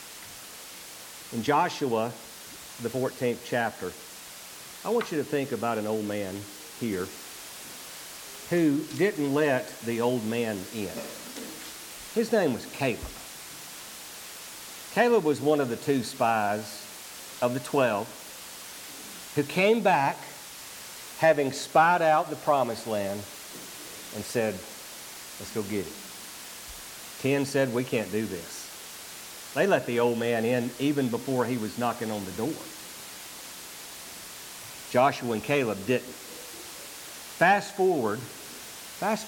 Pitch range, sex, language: 110-145 Hz, male, English